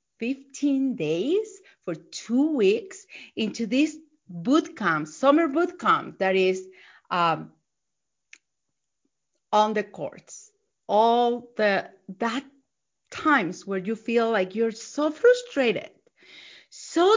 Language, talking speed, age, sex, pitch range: English, 100 wpm, 40-59, female, 200-295 Hz